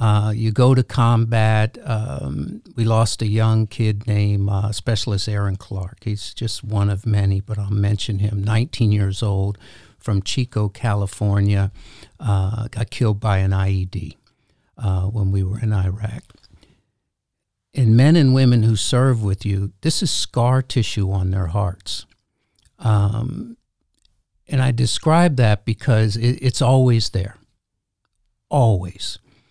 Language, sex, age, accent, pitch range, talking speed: English, male, 60-79, American, 105-125 Hz, 140 wpm